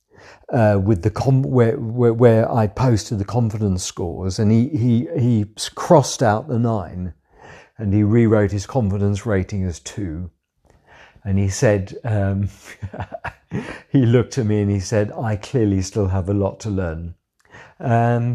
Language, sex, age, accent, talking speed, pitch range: English, male, 50-69, British, 155 wpm, 100-115 Hz